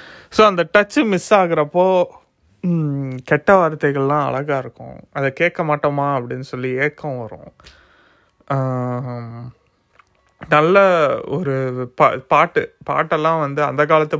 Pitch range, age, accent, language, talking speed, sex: 130-160 Hz, 30-49, native, Tamil, 100 wpm, male